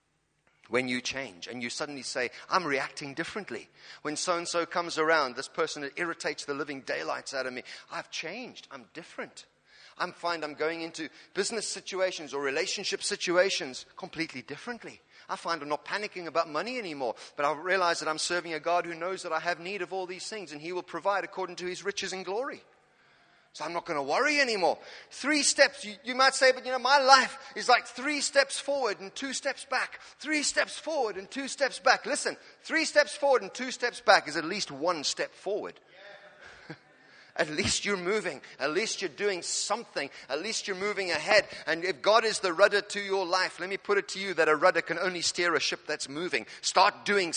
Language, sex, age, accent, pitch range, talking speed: English, male, 30-49, British, 180-280 Hz, 210 wpm